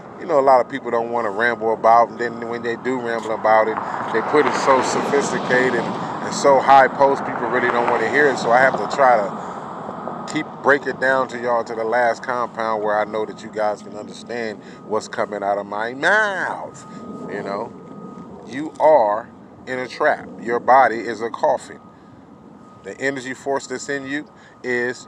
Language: English